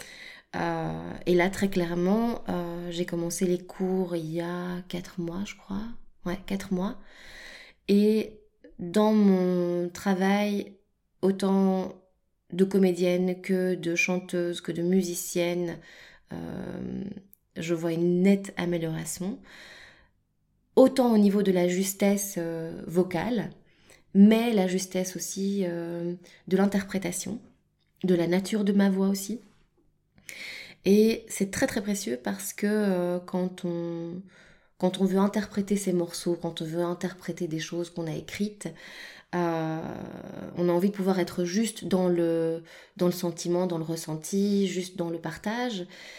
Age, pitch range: 20-39, 175-200 Hz